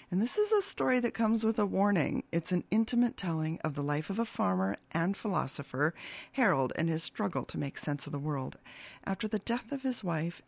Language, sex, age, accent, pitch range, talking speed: English, female, 40-59, American, 150-200 Hz, 220 wpm